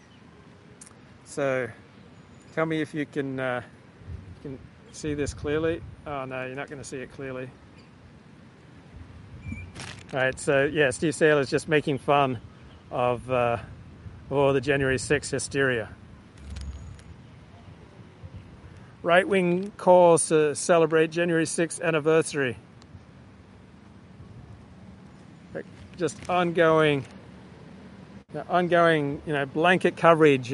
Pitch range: 125-165 Hz